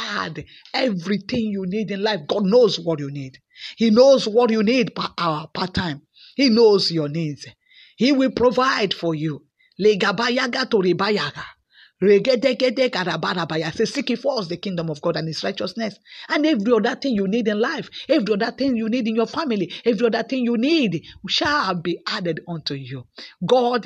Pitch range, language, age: 180-235 Hz, English, 50-69